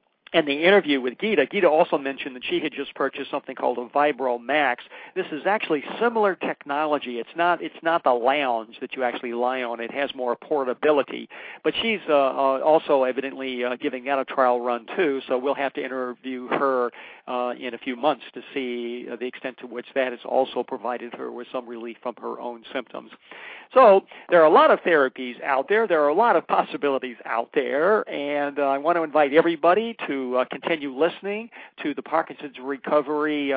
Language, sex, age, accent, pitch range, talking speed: English, male, 50-69, American, 125-160 Hz, 200 wpm